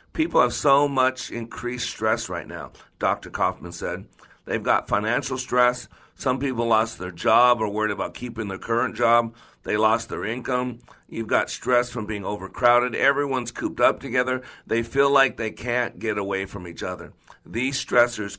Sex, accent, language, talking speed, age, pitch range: male, American, English, 175 wpm, 50-69, 105-135 Hz